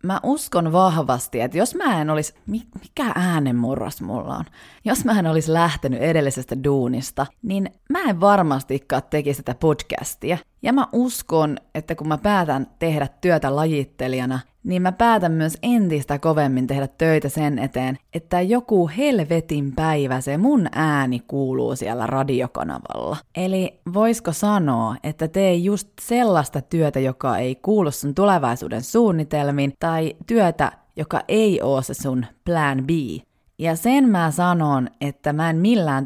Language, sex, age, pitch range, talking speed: Finnish, female, 30-49, 140-190 Hz, 145 wpm